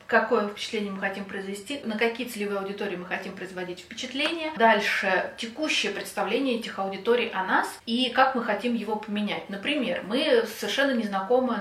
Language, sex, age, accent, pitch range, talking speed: Russian, female, 30-49, native, 200-250 Hz, 155 wpm